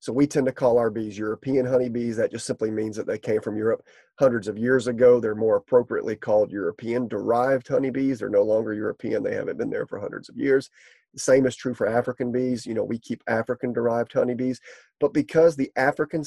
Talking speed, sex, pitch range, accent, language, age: 220 wpm, male, 115-175 Hz, American, English, 30-49